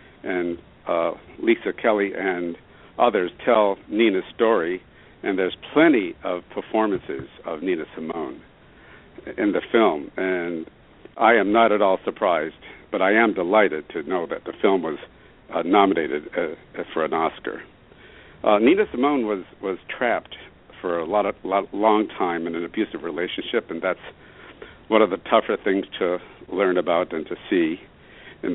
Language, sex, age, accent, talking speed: English, male, 60-79, American, 155 wpm